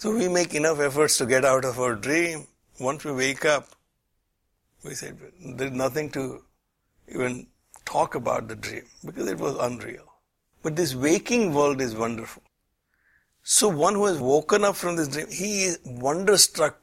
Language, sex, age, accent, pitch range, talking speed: English, male, 60-79, Indian, 130-175 Hz, 170 wpm